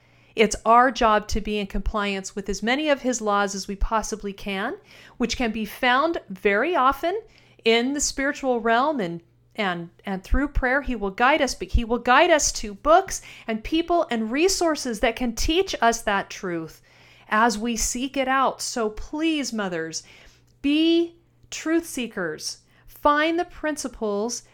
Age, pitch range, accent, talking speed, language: 40-59, 210-270 Hz, American, 165 wpm, English